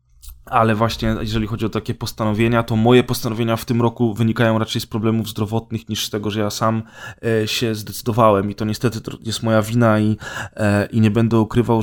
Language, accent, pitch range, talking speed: Polish, native, 105-115 Hz, 195 wpm